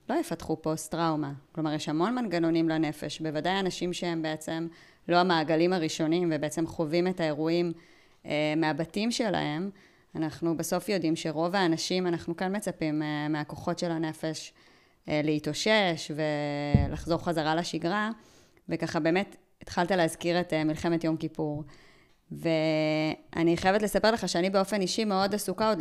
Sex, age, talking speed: female, 20-39, 130 wpm